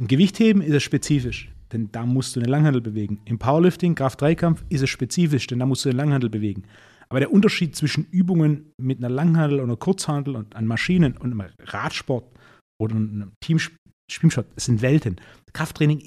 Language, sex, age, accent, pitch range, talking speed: German, male, 30-49, German, 120-155 Hz, 180 wpm